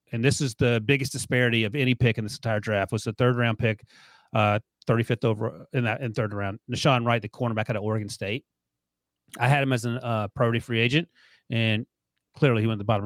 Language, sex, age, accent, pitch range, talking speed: English, male, 30-49, American, 110-130 Hz, 225 wpm